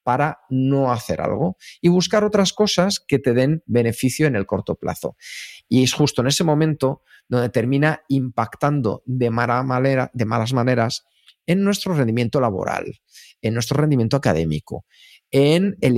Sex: male